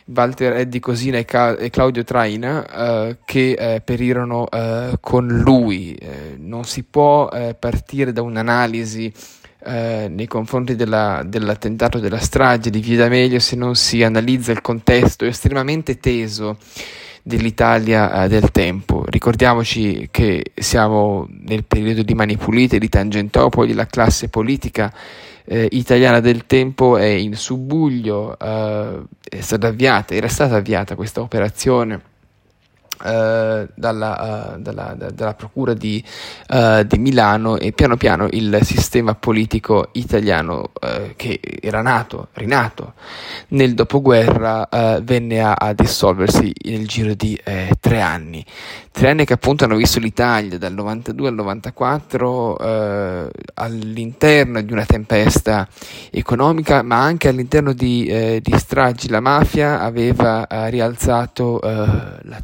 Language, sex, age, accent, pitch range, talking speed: Italian, male, 20-39, native, 105-125 Hz, 120 wpm